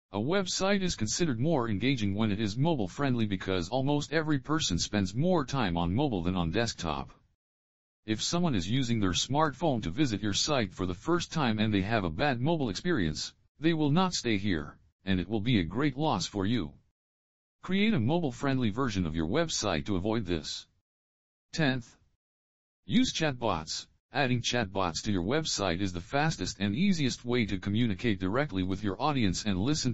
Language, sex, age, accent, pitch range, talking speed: English, male, 50-69, American, 90-145 Hz, 180 wpm